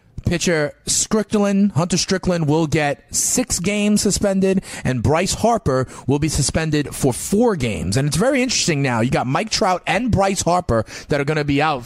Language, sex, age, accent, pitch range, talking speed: English, male, 30-49, American, 125-160 Hz, 180 wpm